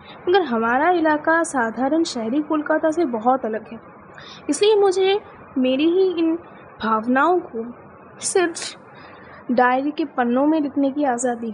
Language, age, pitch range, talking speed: Hindi, 20-39, 240-315 Hz, 130 wpm